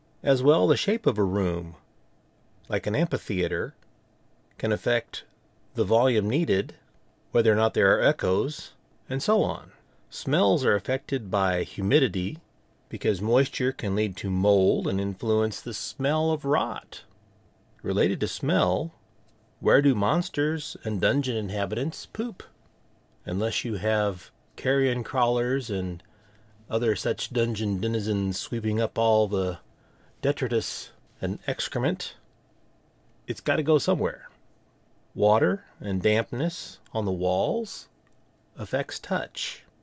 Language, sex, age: English, male, 30-49